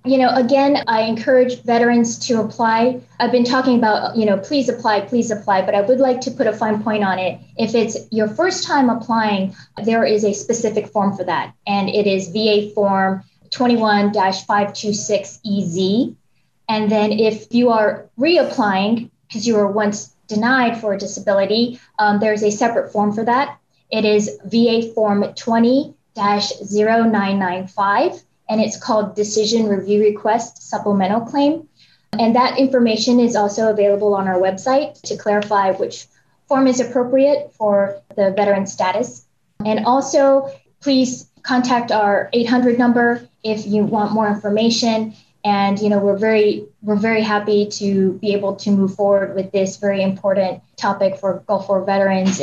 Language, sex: English, female